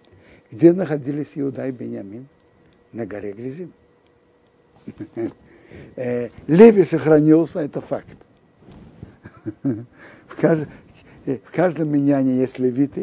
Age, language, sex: 60-79, Russian, male